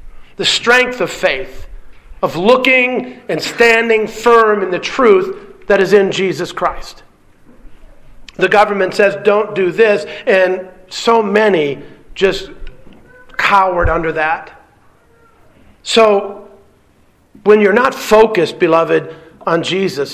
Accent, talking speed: American, 115 wpm